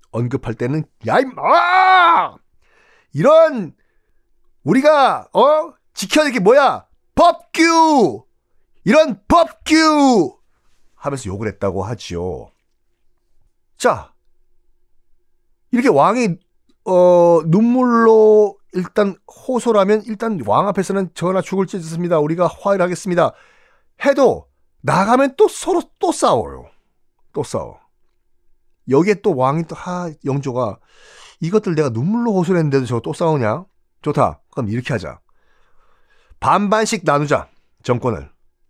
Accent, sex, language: native, male, Korean